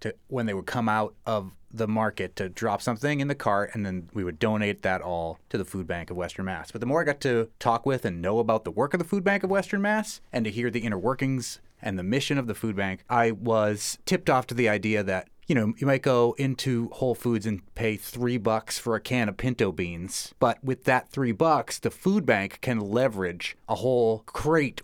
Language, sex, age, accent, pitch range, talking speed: English, male, 30-49, American, 100-135 Hz, 240 wpm